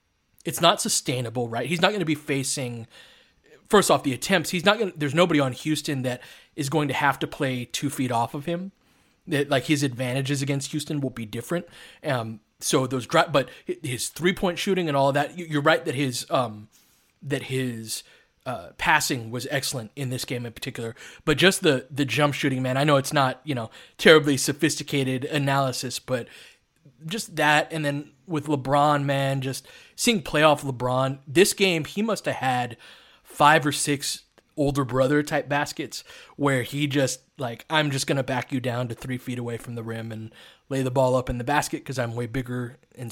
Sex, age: male, 20-39